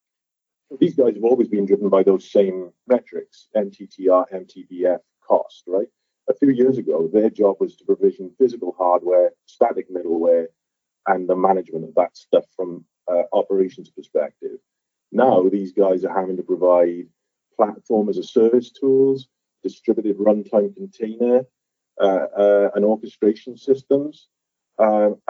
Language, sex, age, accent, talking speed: English, male, 40-59, British, 130 wpm